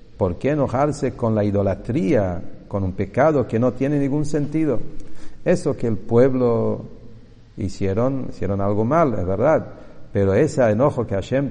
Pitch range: 100-135 Hz